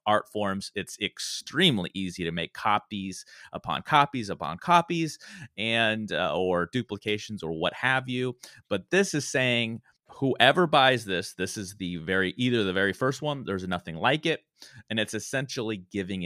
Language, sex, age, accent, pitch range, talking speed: English, male, 30-49, American, 100-150 Hz, 160 wpm